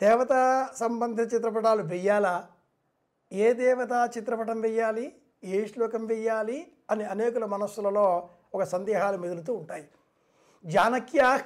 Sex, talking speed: male, 100 wpm